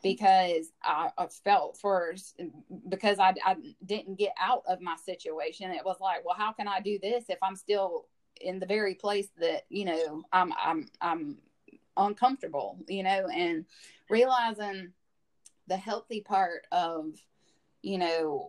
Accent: American